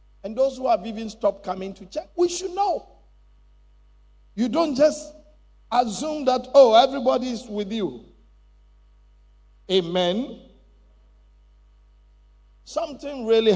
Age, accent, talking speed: 50-69, Nigerian, 110 wpm